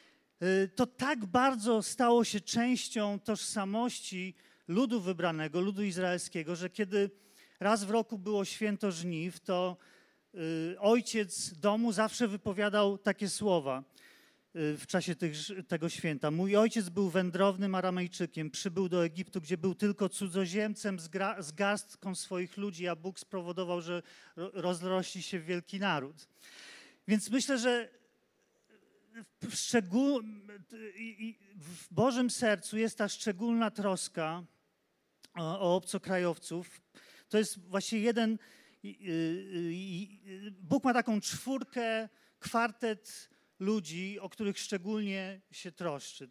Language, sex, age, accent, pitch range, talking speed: Polish, male, 40-59, native, 175-215 Hz, 110 wpm